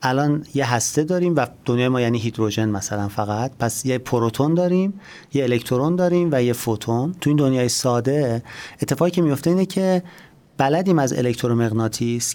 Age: 30-49